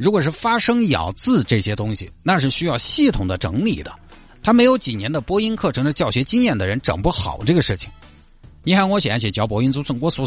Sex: male